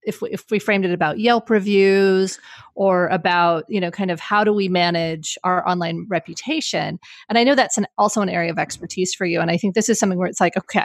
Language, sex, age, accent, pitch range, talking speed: English, female, 30-49, American, 170-220 Hz, 245 wpm